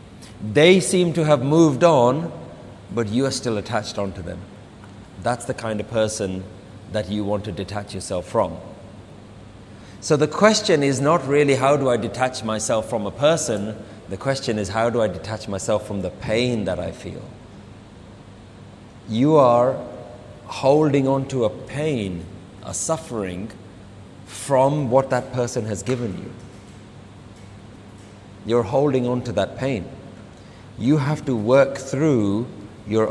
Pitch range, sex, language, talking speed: 100-130 Hz, male, English, 145 wpm